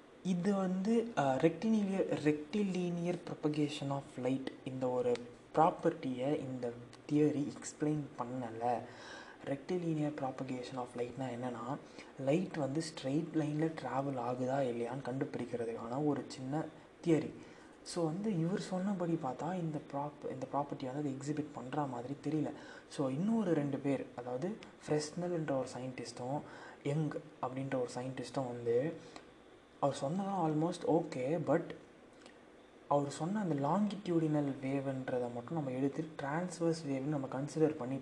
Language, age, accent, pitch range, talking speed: Tamil, 20-39, native, 130-160 Hz, 115 wpm